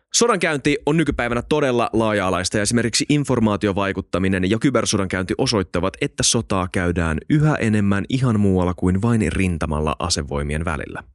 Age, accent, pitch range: 20-39, native, 90-120 Hz